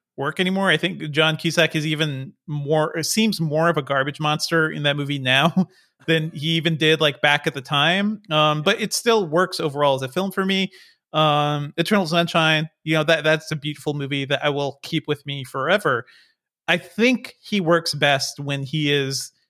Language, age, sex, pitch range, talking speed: English, 30-49, male, 145-175 Hz, 195 wpm